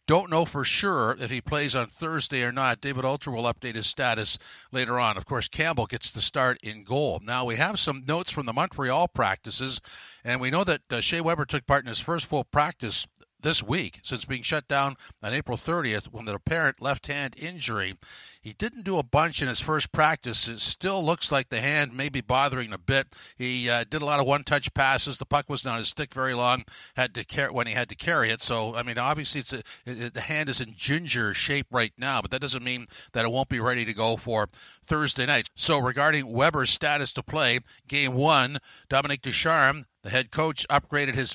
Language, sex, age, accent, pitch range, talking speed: English, male, 50-69, American, 120-145 Hz, 225 wpm